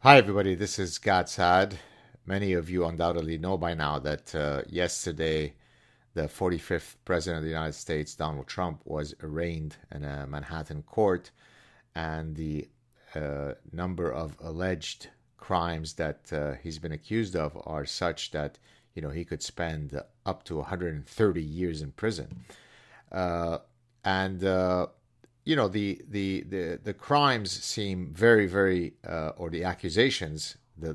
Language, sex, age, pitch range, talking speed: English, male, 50-69, 80-100 Hz, 145 wpm